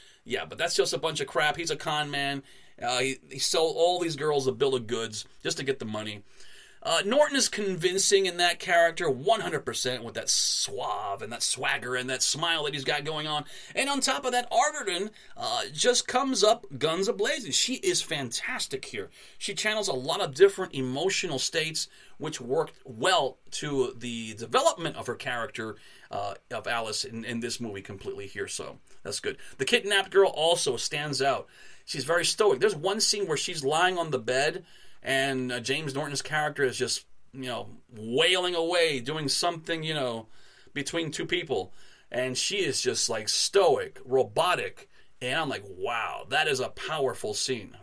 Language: English